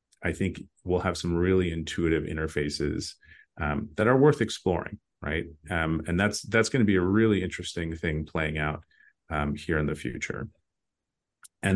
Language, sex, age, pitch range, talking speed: English, male, 30-49, 80-95 Hz, 170 wpm